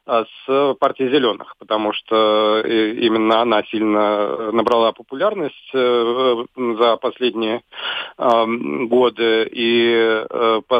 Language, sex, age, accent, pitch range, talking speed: Russian, male, 40-59, native, 110-125 Hz, 85 wpm